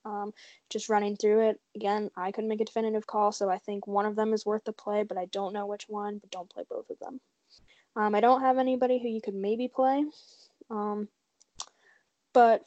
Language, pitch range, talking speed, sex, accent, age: English, 205-230 Hz, 220 wpm, female, American, 10-29